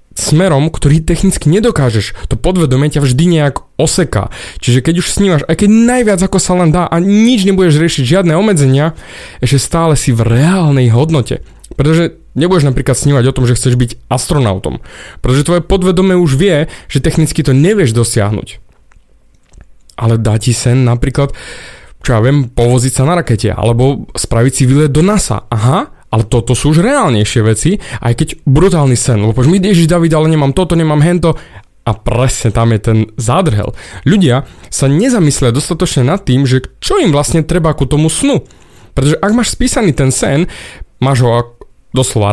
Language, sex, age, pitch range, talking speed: Slovak, male, 20-39, 120-165 Hz, 170 wpm